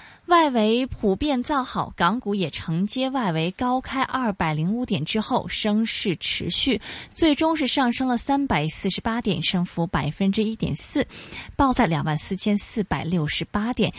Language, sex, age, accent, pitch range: Chinese, female, 20-39, native, 175-240 Hz